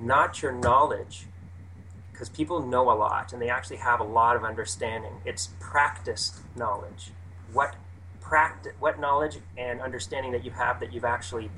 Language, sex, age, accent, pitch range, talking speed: English, male, 30-49, American, 90-120 Hz, 160 wpm